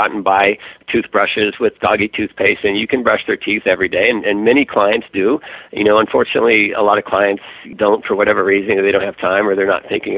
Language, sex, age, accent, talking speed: English, male, 50-69, American, 230 wpm